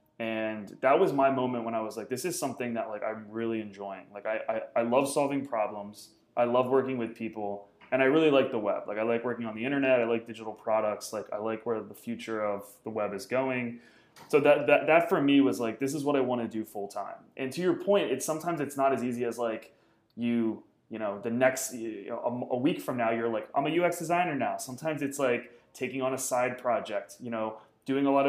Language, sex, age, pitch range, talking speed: English, male, 20-39, 115-135 Hz, 250 wpm